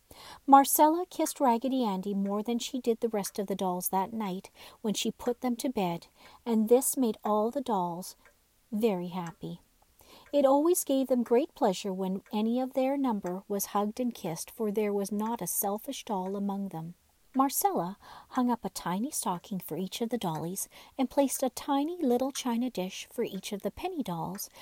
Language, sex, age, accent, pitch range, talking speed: English, female, 50-69, American, 195-270 Hz, 190 wpm